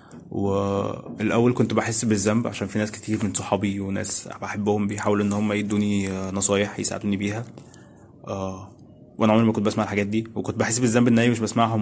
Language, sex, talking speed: Arabic, male, 170 wpm